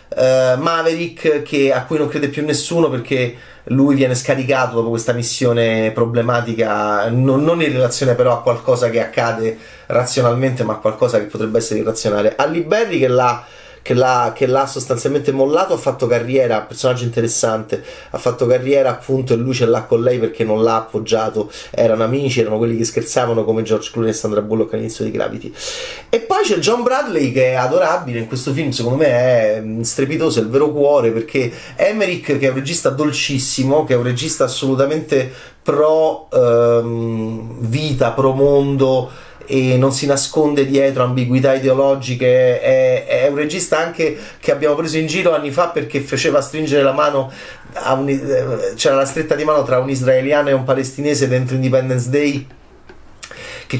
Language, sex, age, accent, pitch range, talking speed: Italian, male, 30-49, native, 125-150 Hz, 170 wpm